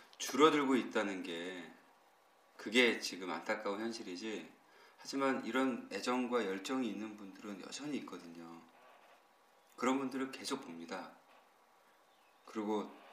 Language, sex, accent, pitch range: Korean, male, native, 105-135 Hz